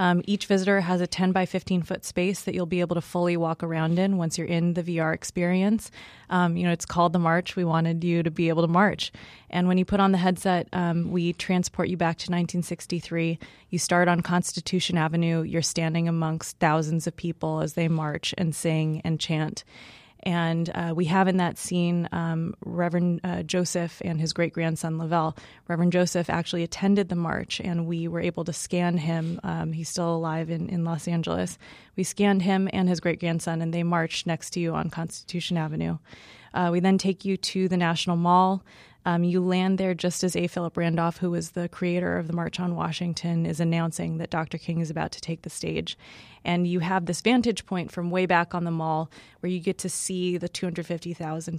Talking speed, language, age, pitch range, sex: 210 wpm, English, 20-39, 165-180 Hz, female